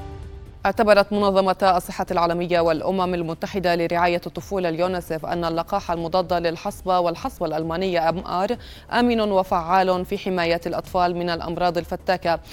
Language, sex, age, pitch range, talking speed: Arabic, female, 20-39, 175-200 Hz, 120 wpm